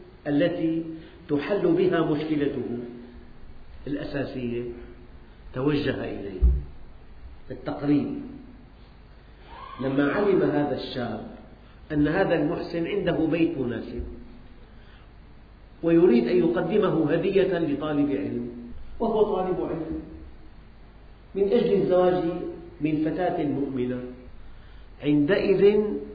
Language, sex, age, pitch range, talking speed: Arabic, male, 50-69, 120-165 Hz, 80 wpm